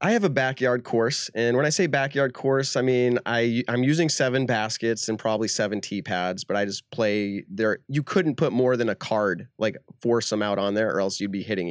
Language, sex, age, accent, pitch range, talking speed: English, male, 30-49, American, 115-145 Hz, 235 wpm